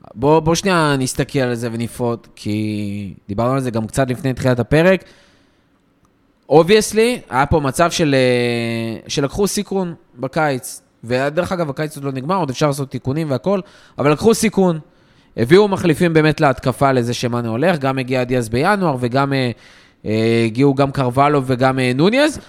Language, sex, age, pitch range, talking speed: Hebrew, male, 20-39, 125-180 Hz, 145 wpm